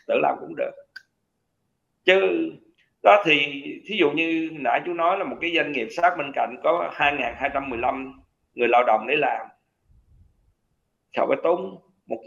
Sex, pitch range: male, 125-170 Hz